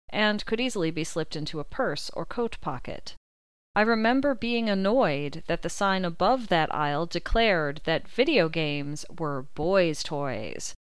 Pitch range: 155-200 Hz